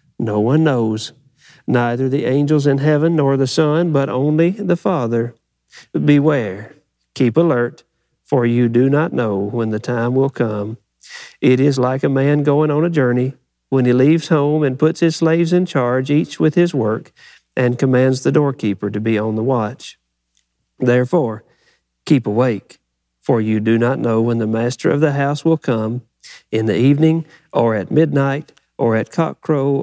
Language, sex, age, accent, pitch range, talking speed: English, male, 50-69, American, 115-150 Hz, 170 wpm